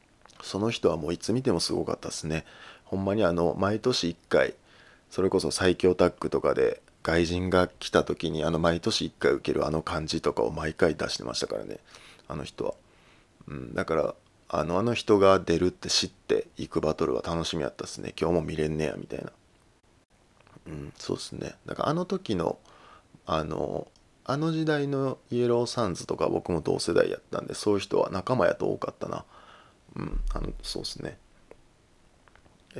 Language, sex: Japanese, male